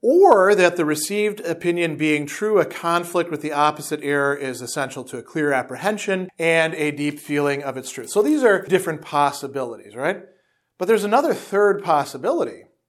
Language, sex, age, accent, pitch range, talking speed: English, male, 40-59, American, 150-195 Hz, 170 wpm